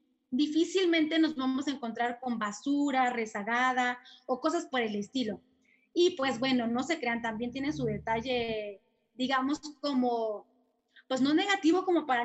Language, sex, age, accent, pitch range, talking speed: Spanish, female, 20-39, Mexican, 230-285 Hz, 145 wpm